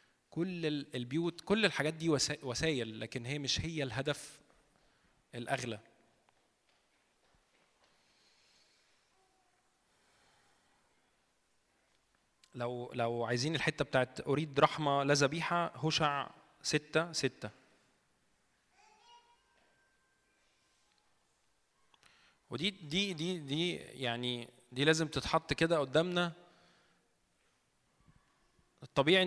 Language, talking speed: Arabic, 70 wpm